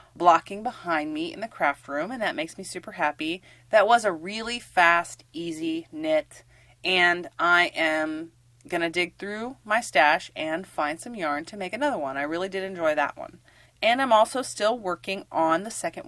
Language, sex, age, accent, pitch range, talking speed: English, female, 30-49, American, 150-210 Hz, 185 wpm